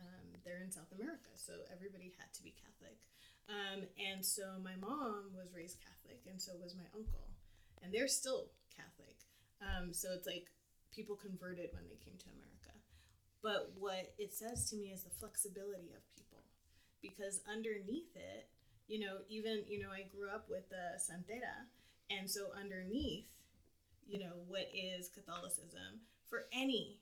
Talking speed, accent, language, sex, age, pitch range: 165 wpm, American, English, female, 20-39, 175-205 Hz